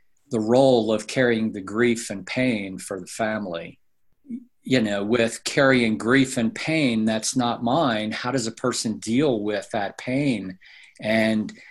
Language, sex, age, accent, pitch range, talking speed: English, male, 50-69, American, 110-135 Hz, 155 wpm